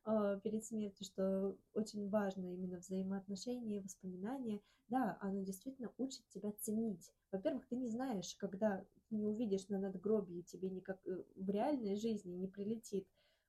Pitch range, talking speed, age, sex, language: 190-220 Hz, 135 wpm, 20-39, female, Russian